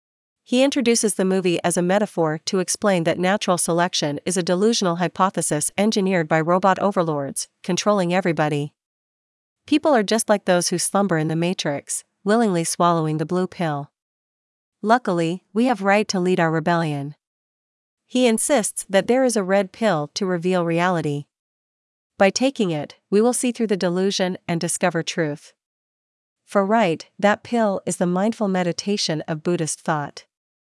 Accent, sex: American, female